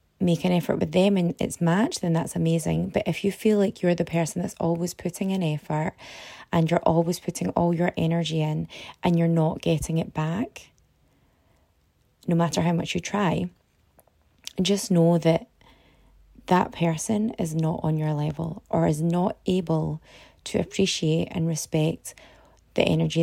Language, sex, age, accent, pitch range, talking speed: English, female, 20-39, British, 160-190 Hz, 165 wpm